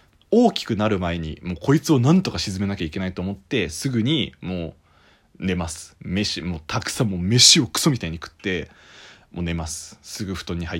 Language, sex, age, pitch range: Japanese, male, 20-39, 85-130 Hz